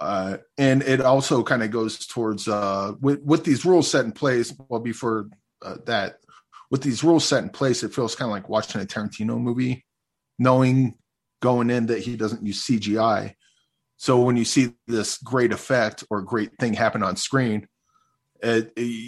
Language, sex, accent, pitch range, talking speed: English, male, American, 105-130 Hz, 180 wpm